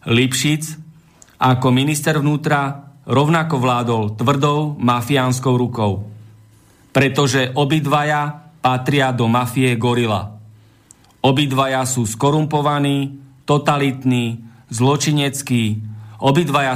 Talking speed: 75 wpm